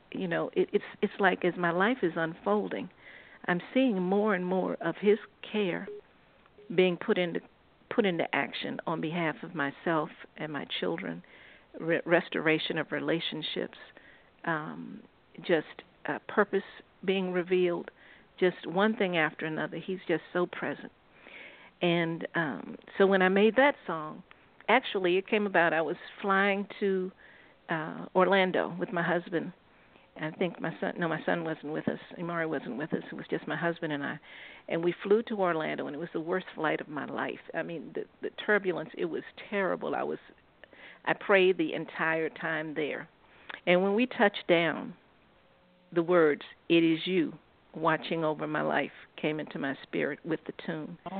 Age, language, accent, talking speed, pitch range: 50-69, English, American, 170 wpm, 165-200 Hz